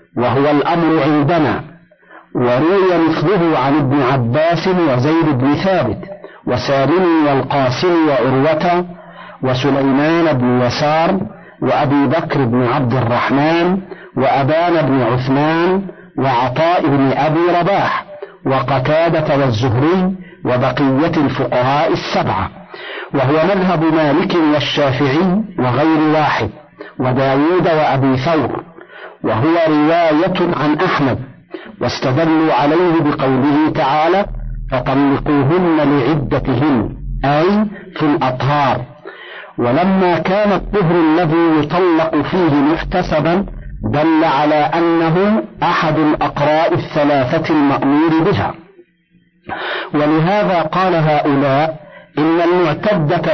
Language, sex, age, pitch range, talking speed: Arabic, male, 50-69, 140-175 Hz, 85 wpm